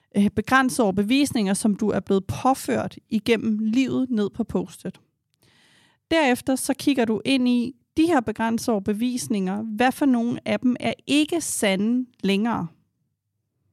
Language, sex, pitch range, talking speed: Danish, female, 195-255 Hz, 135 wpm